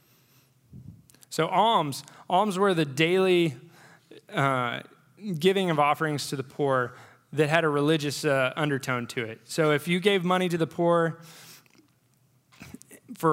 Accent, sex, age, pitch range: American, male, 20-39, 135-165 Hz